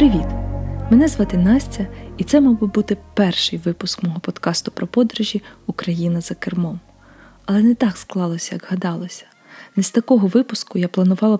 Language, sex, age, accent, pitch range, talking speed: Ukrainian, female, 20-39, native, 175-210 Hz, 160 wpm